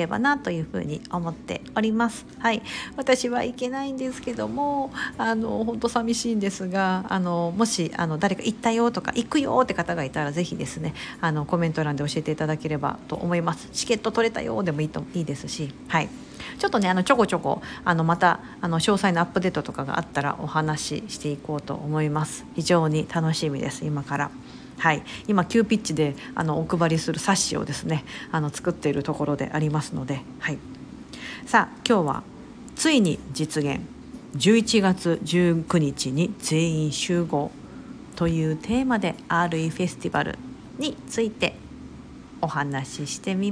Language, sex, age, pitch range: Japanese, female, 50-69, 155-220 Hz